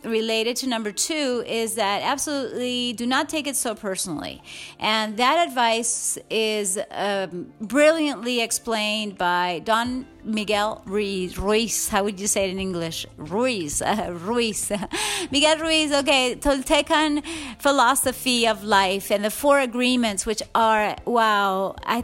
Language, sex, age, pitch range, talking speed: English, female, 30-49, 215-275 Hz, 135 wpm